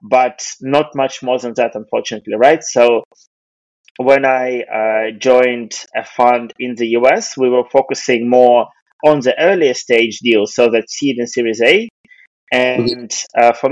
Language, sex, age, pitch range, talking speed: English, male, 20-39, 120-140 Hz, 160 wpm